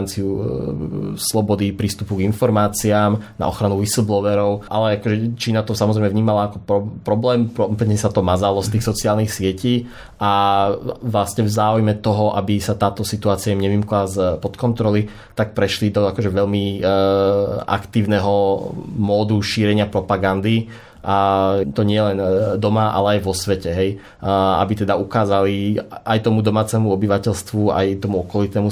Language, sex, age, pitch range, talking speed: Slovak, male, 20-39, 95-105 Hz, 140 wpm